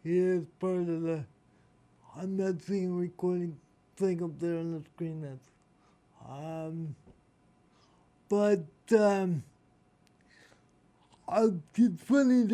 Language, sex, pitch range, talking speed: English, male, 160-210 Hz, 105 wpm